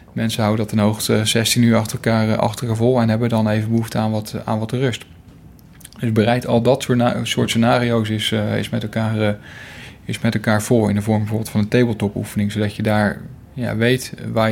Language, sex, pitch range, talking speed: Dutch, male, 110-120 Hz, 215 wpm